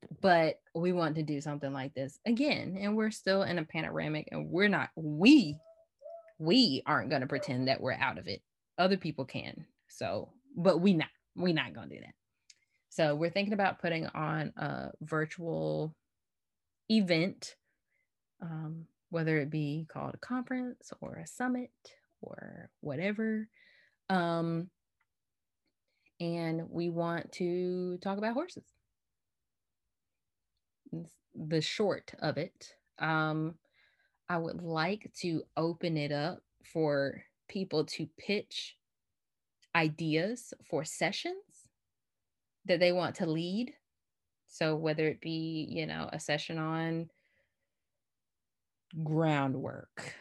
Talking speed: 125 wpm